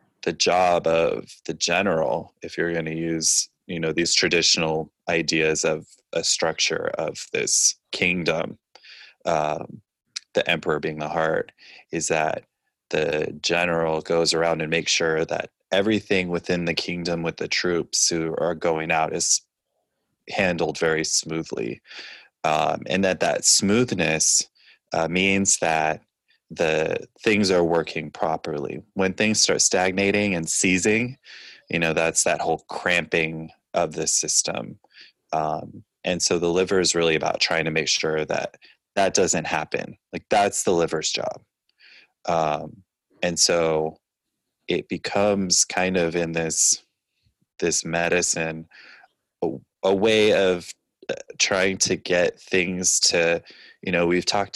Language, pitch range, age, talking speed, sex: English, 80-95 Hz, 20-39, 135 wpm, male